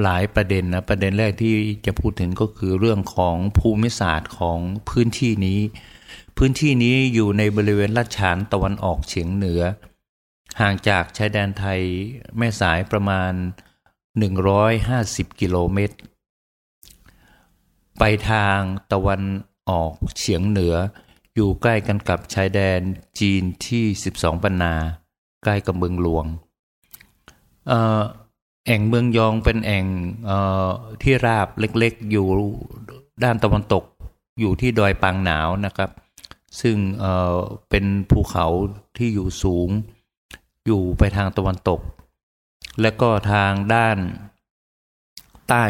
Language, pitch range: Thai, 90-110 Hz